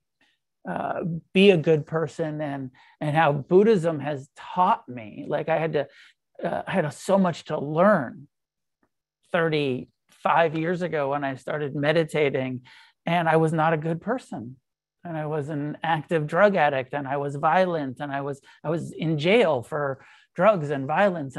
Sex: male